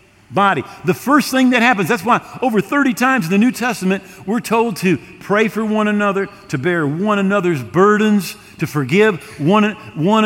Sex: male